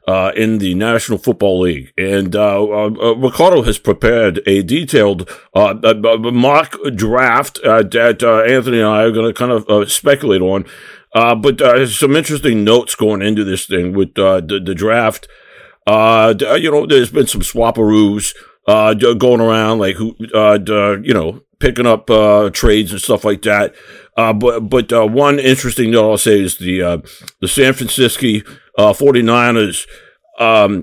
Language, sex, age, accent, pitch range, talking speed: English, male, 50-69, American, 105-120 Hz, 175 wpm